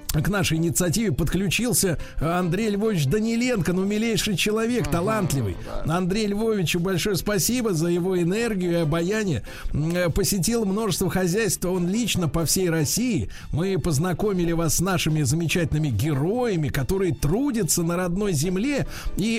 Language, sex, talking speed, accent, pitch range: Russian, male, 125 wpm, native, 155-205 Hz